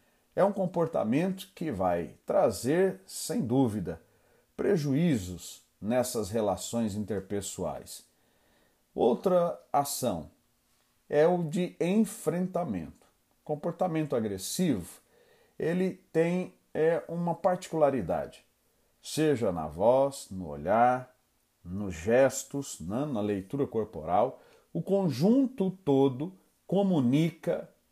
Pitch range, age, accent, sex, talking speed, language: 120-175 Hz, 40-59, Brazilian, male, 85 wpm, Portuguese